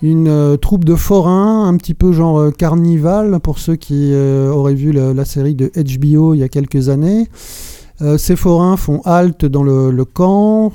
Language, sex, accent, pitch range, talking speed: French, male, French, 145-180 Hz, 195 wpm